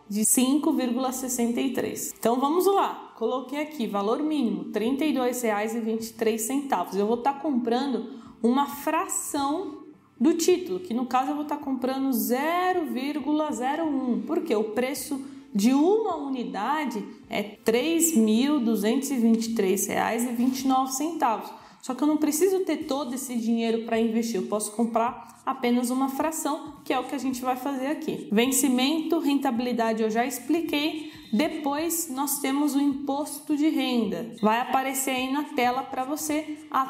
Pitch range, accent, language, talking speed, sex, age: 235-295 Hz, Brazilian, Portuguese, 145 wpm, female, 20-39